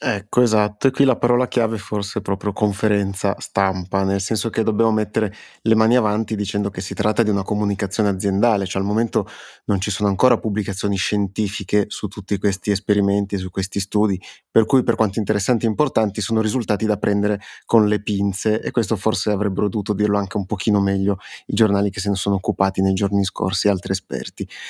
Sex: male